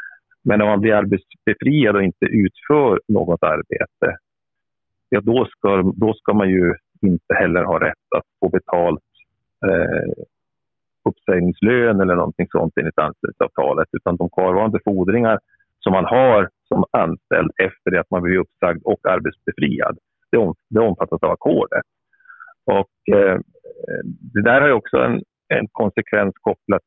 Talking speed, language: 140 wpm, English